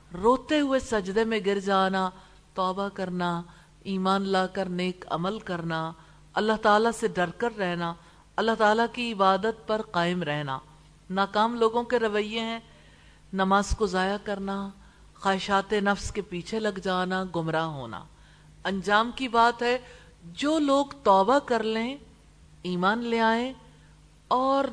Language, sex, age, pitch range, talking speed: English, female, 50-69, 180-235 Hz, 130 wpm